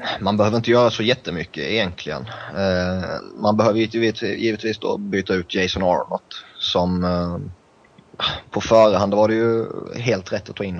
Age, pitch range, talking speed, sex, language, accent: 20-39, 90-105 Hz, 165 wpm, male, Swedish, native